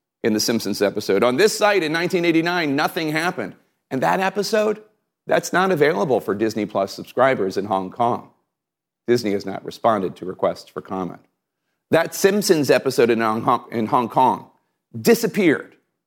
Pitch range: 110-170 Hz